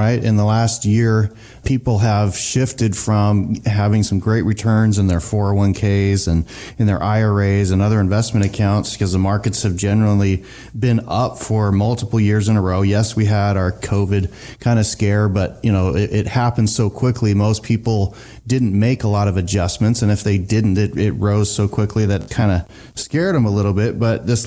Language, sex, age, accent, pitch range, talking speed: English, male, 30-49, American, 100-115 Hz, 205 wpm